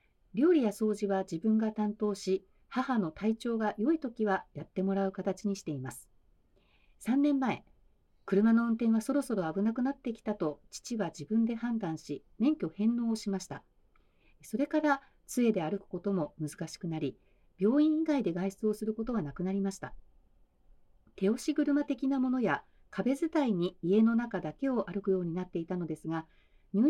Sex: female